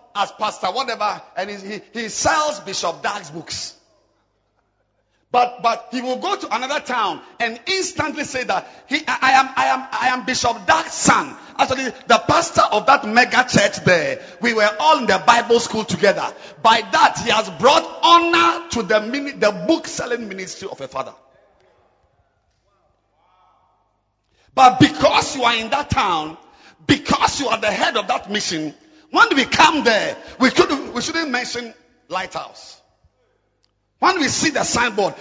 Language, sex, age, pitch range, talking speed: English, male, 50-69, 195-305 Hz, 165 wpm